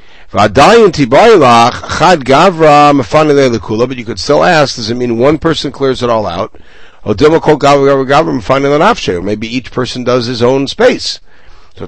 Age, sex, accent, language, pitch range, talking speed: 60-79, male, American, English, 105-140 Hz, 115 wpm